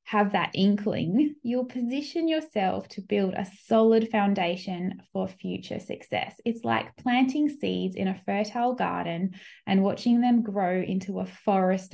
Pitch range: 185-230 Hz